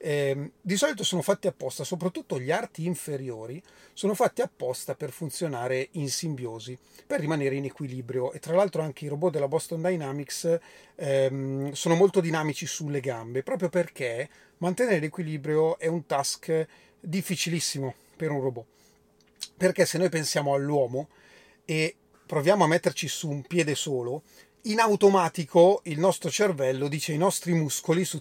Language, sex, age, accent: Italian, male, 30-49, native